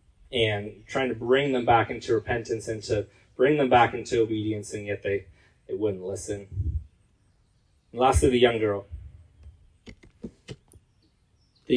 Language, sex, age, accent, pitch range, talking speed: English, male, 20-39, American, 90-125 Hz, 140 wpm